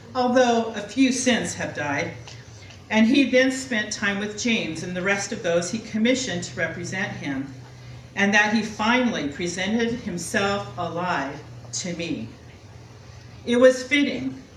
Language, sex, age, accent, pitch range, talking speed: English, female, 40-59, American, 150-230 Hz, 145 wpm